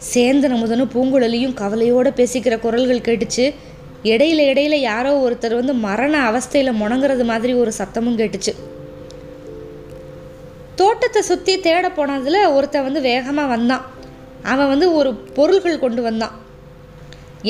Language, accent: Tamil, native